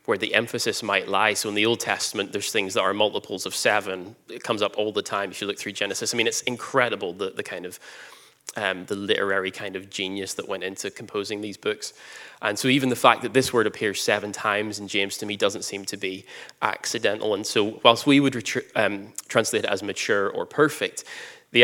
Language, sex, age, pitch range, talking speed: English, male, 20-39, 105-140 Hz, 220 wpm